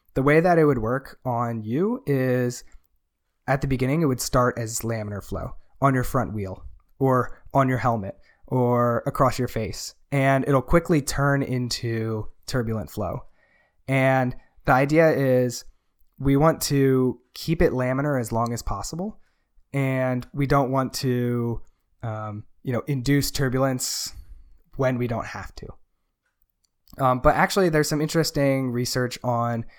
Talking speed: 150 wpm